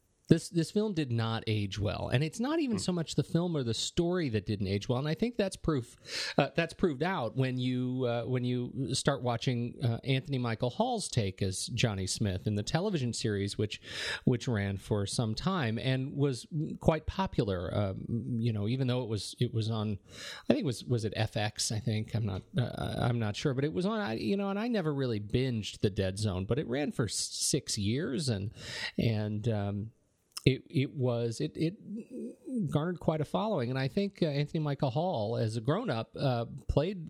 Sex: male